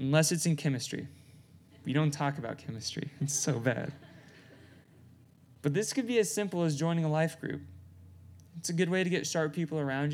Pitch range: 125-155 Hz